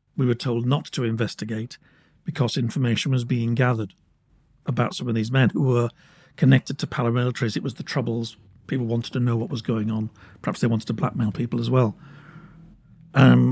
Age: 50-69